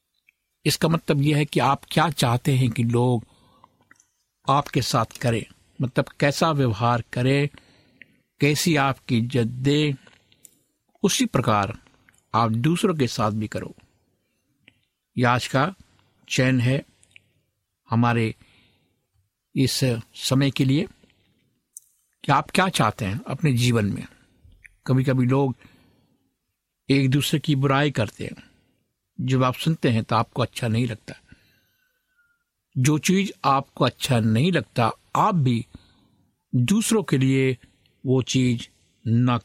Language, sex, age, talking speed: Hindi, male, 60-79, 120 wpm